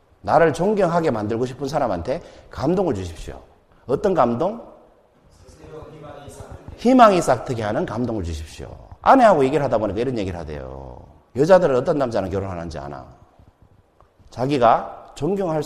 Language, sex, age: Korean, male, 40-59